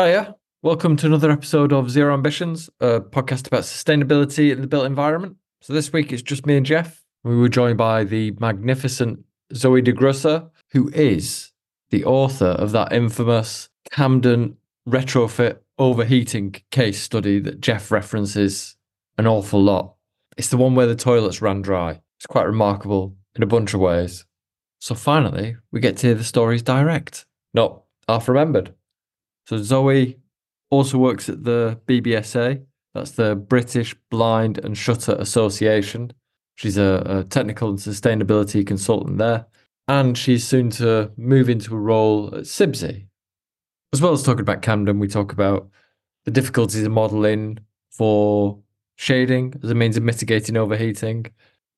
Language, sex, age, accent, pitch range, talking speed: English, male, 20-39, British, 105-130 Hz, 150 wpm